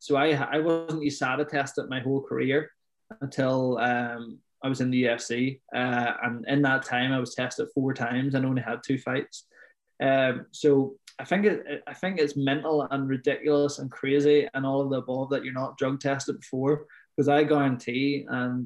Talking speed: 190 wpm